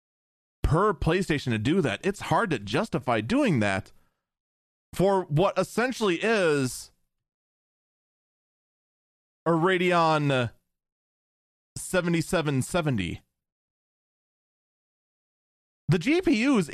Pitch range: 130-170 Hz